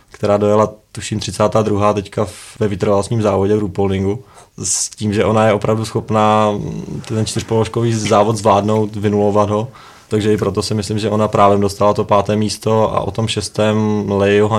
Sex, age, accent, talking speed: male, 20-39, native, 165 wpm